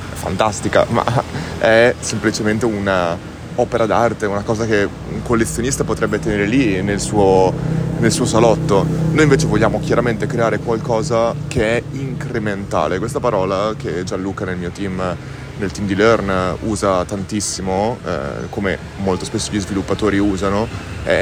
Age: 30-49